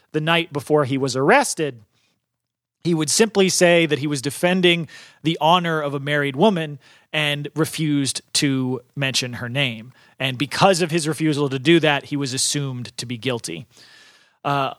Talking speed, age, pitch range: 165 wpm, 30-49, 145-180 Hz